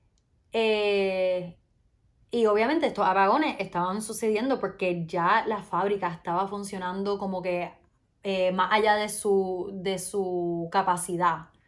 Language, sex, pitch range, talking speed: Spanish, female, 175-230 Hz, 115 wpm